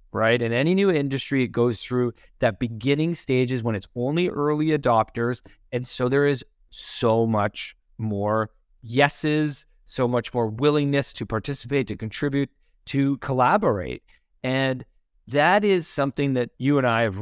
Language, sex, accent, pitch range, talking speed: English, male, American, 110-140 Hz, 150 wpm